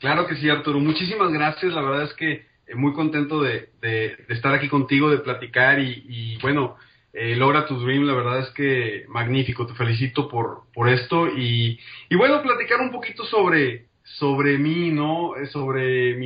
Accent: Mexican